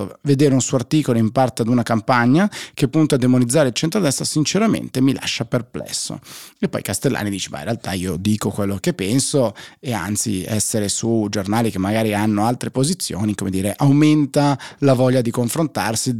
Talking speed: 180 wpm